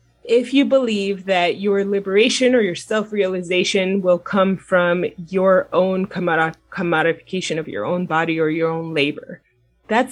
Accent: American